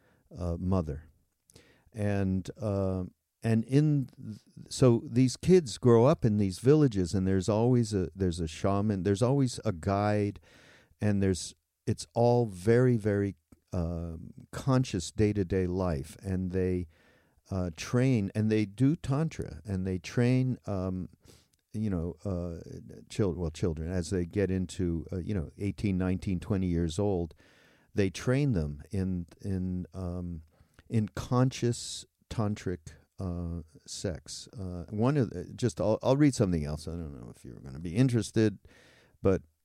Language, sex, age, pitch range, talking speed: English, male, 50-69, 90-120 Hz, 150 wpm